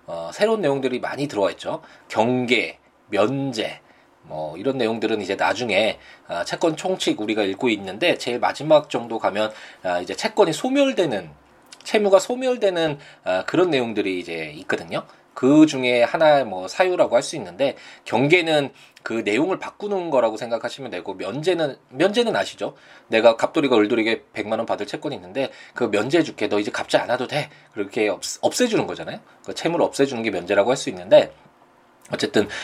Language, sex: Korean, male